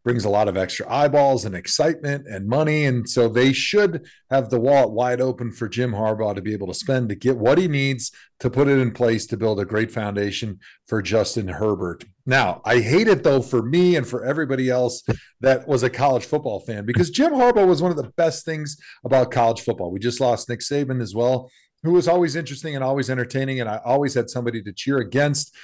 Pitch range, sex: 115-140 Hz, male